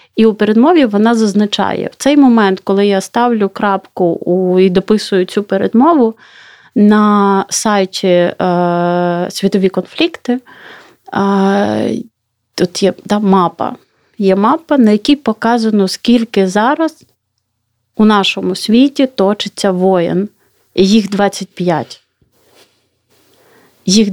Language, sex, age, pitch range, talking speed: Ukrainian, female, 30-49, 185-215 Hz, 100 wpm